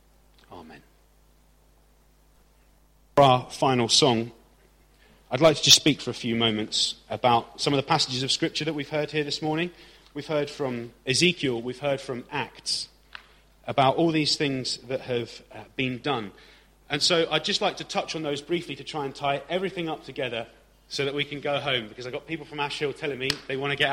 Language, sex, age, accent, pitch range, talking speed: English, male, 30-49, British, 125-160 Hz, 200 wpm